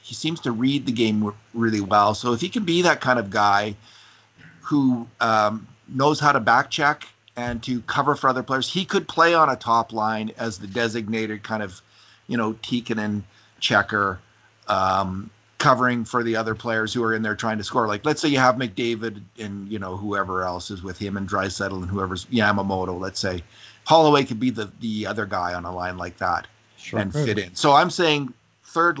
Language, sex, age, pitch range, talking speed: English, male, 40-59, 100-120 Hz, 205 wpm